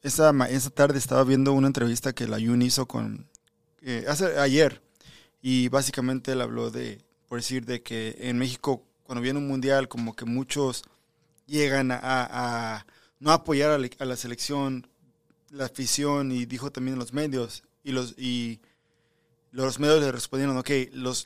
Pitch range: 125-145 Hz